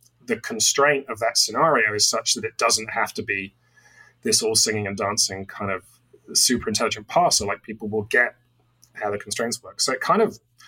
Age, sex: 30-49, male